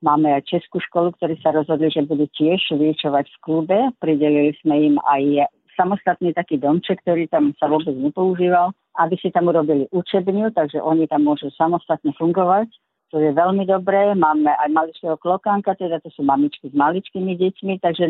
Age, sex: 50-69, female